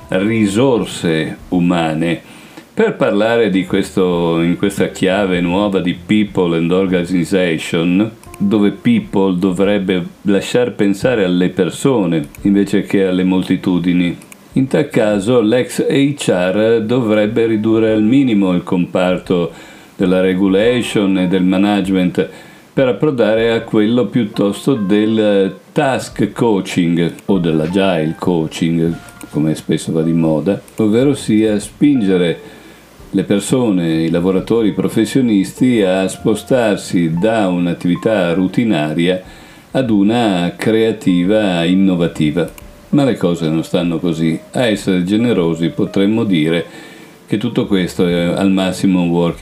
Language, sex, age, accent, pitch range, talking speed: Italian, male, 50-69, native, 85-105 Hz, 115 wpm